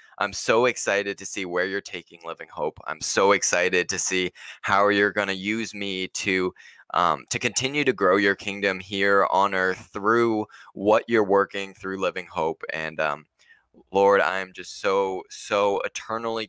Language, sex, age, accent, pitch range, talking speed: English, male, 20-39, American, 95-110 Hz, 170 wpm